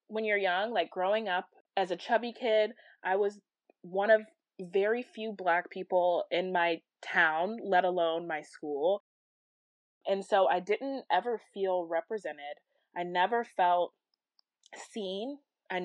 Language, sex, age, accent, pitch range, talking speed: English, female, 20-39, American, 170-205 Hz, 140 wpm